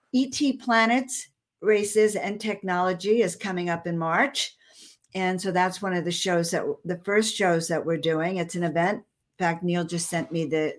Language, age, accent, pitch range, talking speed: English, 60-79, American, 170-210 Hz, 190 wpm